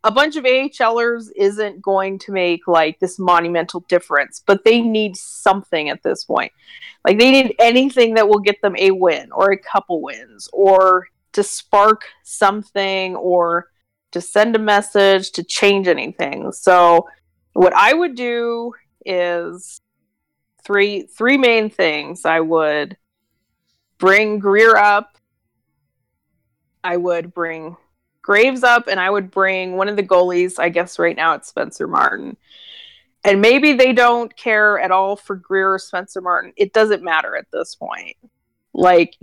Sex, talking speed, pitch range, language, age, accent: female, 150 wpm, 180-215 Hz, English, 20-39, American